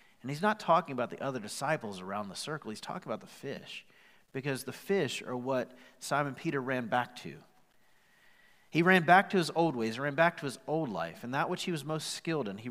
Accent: American